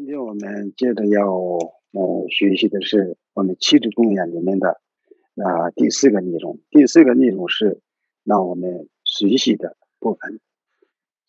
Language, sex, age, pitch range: Chinese, male, 50-69, 95-115 Hz